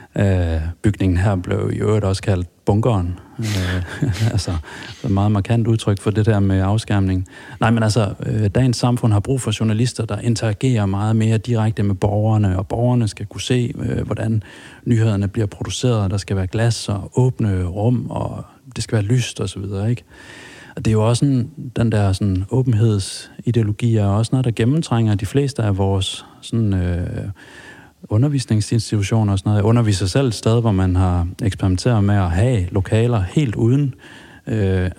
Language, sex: Danish, male